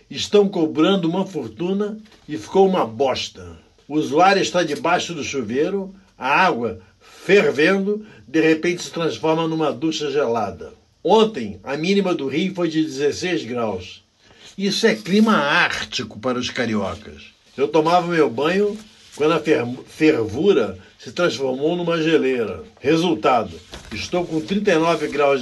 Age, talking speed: 60-79, 130 wpm